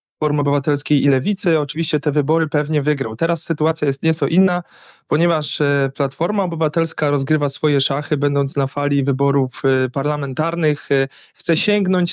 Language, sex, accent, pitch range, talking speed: Polish, male, native, 140-170 Hz, 135 wpm